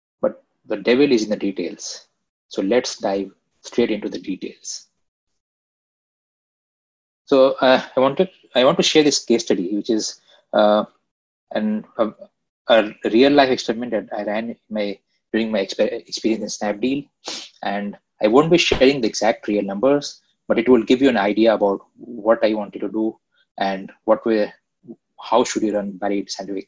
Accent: Indian